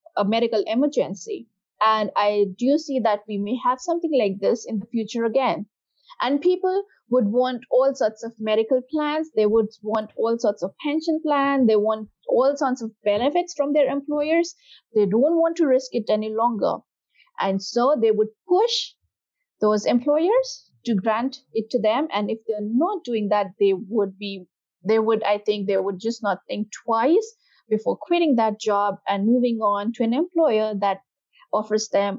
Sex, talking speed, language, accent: female, 180 wpm, English, Indian